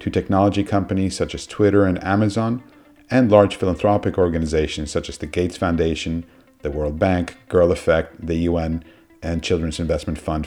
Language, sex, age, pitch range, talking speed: English, male, 50-69, 85-105 Hz, 160 wpm